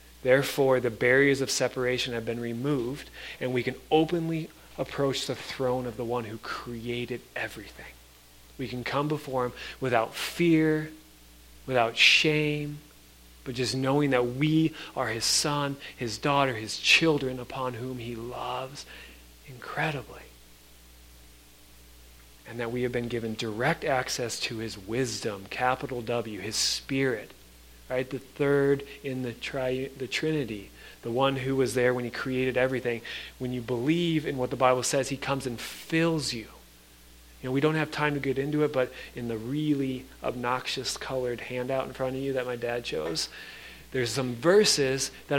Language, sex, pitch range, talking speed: English, male, 115-140 Hz, 155 wpm